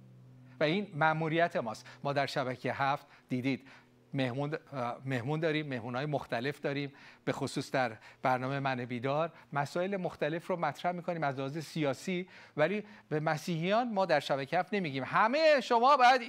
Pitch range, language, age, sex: 115-165 Hz, Persian, 40-59, male